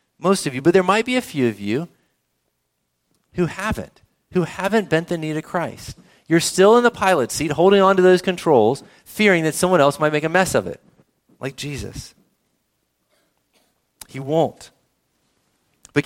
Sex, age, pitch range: male, 40-59, 145-210 Hz